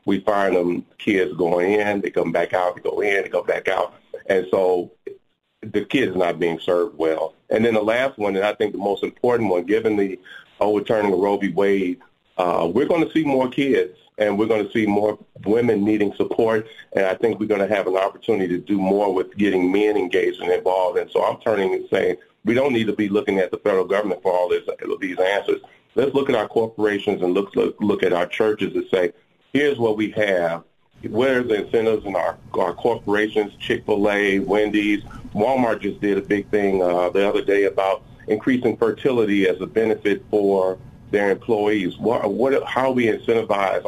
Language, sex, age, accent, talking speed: English, male, 40-59, American, 205 wpm